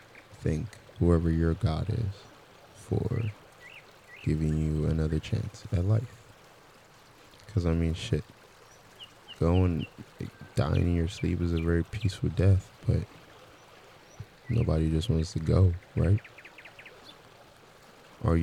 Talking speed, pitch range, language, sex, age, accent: 110 wpm, 80-115 Hz, English, male, 20-39, American